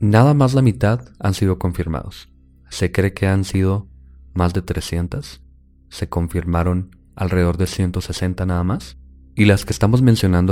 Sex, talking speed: male, 155 wpm